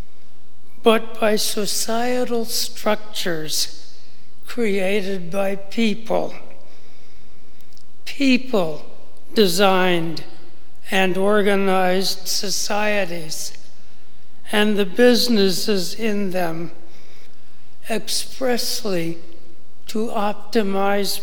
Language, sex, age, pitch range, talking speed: English, male, 60-79, 175-215 Hz, 55 wpm